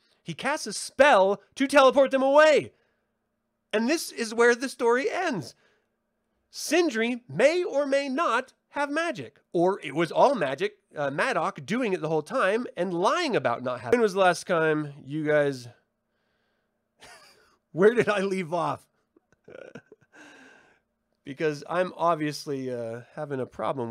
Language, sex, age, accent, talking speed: English, male, 30-49, American, 150 wpm